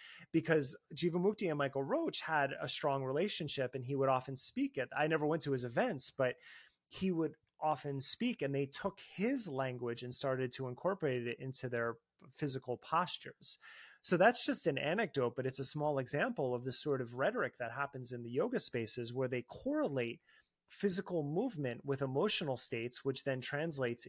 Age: 30-49